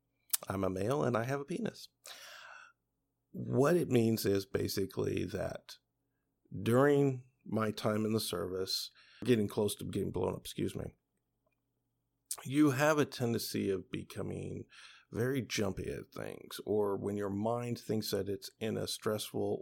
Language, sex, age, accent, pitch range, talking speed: English, male, 50-69, American, 105-125 Hz, 145 wpm